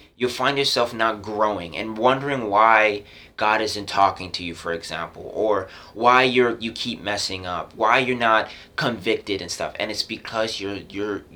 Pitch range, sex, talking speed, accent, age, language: 85-110 Hz, male, 170 wpm, American, 30-49, English